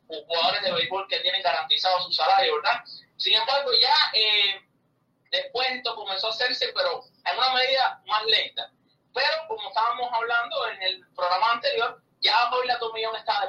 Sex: male